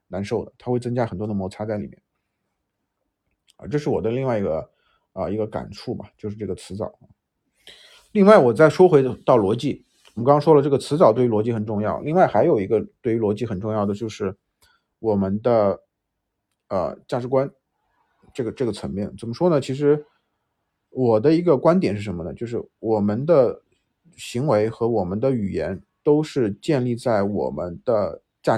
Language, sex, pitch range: Chinese, male, 110-145 Hz